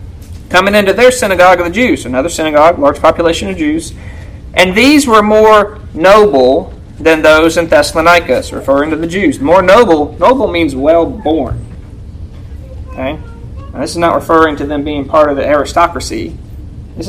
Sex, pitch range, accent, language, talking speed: male, 135-195 Hz, American, English, 170 wpm